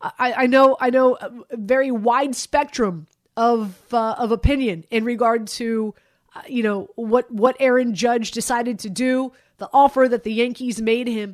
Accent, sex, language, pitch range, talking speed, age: American, female, English, 220-260 Hz, 175 wpm, 30-49